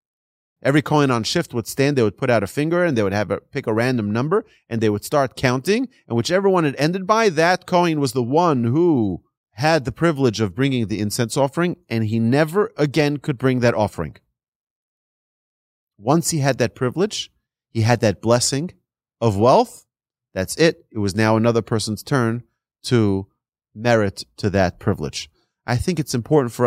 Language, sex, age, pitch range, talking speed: English, male, 30-49, 110-155 Hz, 185 wpm